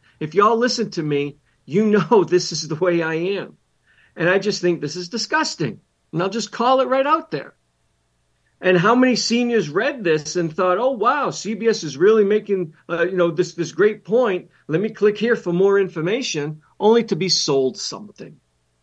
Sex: male